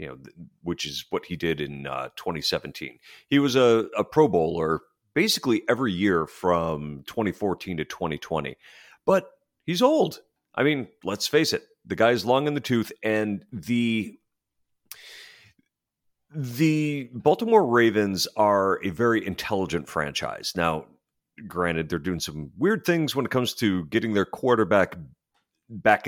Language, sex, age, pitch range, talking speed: English, male, 40-59, 95-130 Hz, 145 wpm